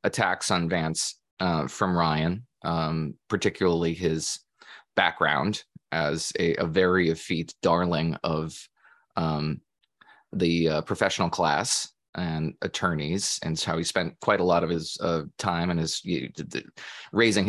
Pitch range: 80-105 Hz